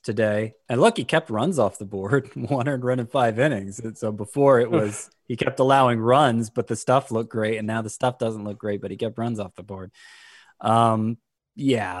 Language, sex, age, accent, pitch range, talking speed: English, male, 20-39, American, 110-135 Hz, 225 wpm